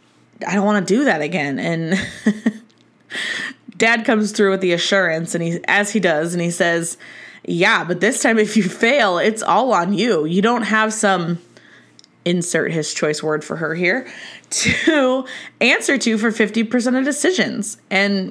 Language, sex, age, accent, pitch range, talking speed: English, female, 20-39, American, 170-220 Hz, 170 wpm